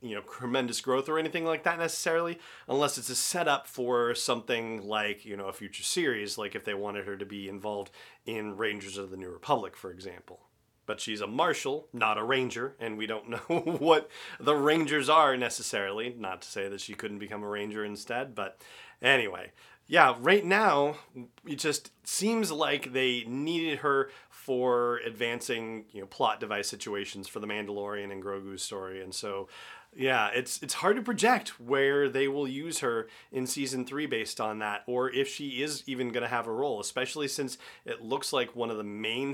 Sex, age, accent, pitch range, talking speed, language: male, 30-49, American, 110-140 Hz, 190 wpm, English